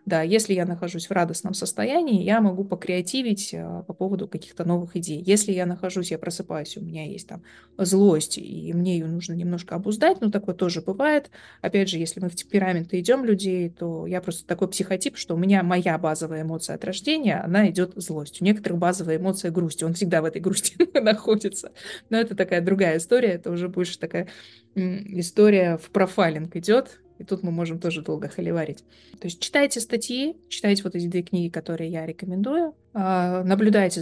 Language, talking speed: Russian, 185 wpm